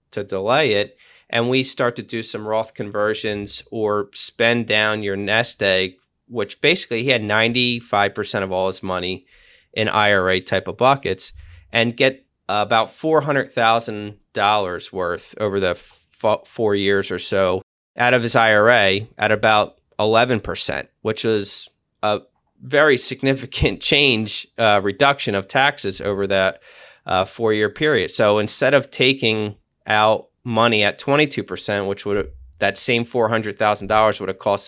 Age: 30-49